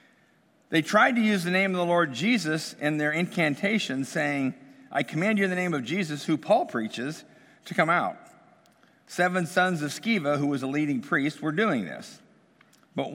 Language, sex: English, male